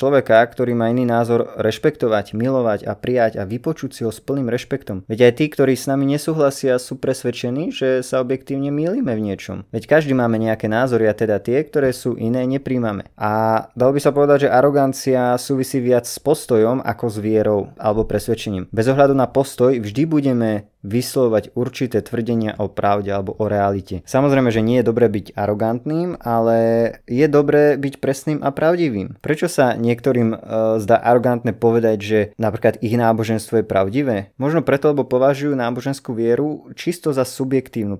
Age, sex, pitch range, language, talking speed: 20-39, male, 110-140 Hz, Slovak, 170 wpm